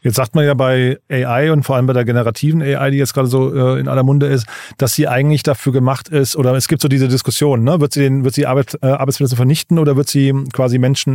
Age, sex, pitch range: 40-59, male, 125-140 Hz